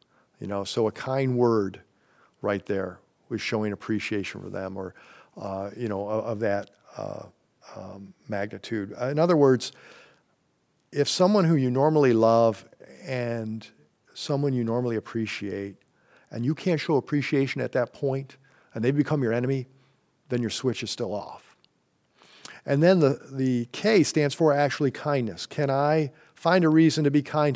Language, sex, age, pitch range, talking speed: English, male, 50-69, 110-145 Hz, 160 wpm